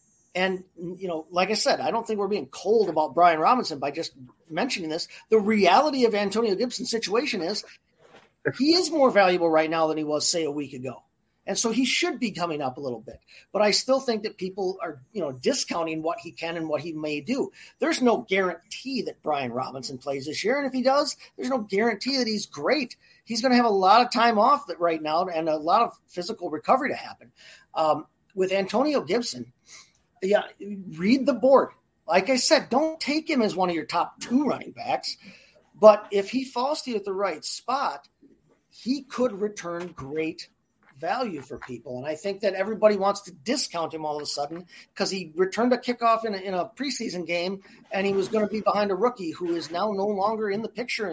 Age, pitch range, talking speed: 40-59, 170-235 Hz, 215 wpm